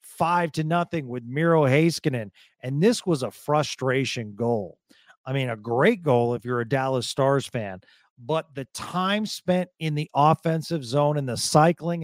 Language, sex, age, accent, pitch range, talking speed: English, male, 40-59, American, 135-180 Hz, 170 wpm